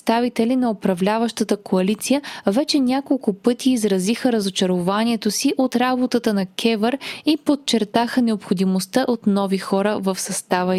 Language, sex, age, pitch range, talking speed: Bulgarian, female, 20-39, 200-260 Hz, 120 wpm